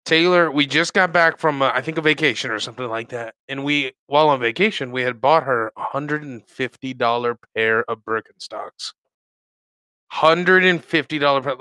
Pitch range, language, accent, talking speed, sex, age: 115-155 Hz, English, American, 155 wpm, male, 30-49